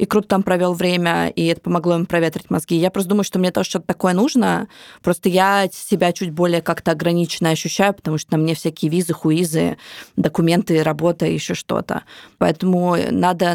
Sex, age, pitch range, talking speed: female, 20-39, 175-215 Hz, 185 wpm